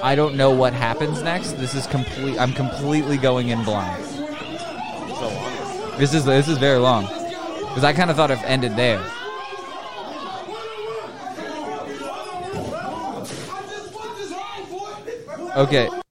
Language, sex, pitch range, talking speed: English, male, 135-175 Hz, 110 wpm